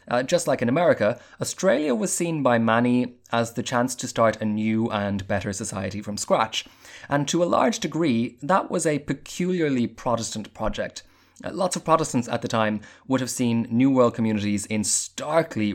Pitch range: 105-130 Hz